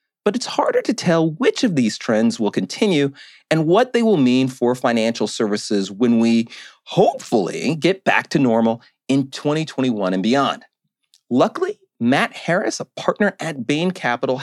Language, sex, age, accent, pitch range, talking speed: English, male, 40-59, American, 140-220 Hz, 160 wpm